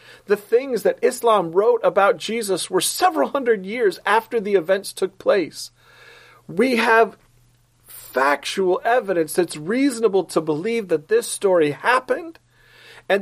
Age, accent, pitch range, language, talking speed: 40-59, American, 140-215 Hz, English, 130 wpm